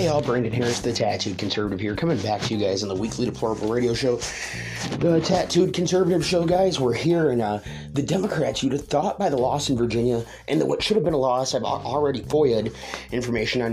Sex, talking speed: male, 225 wpm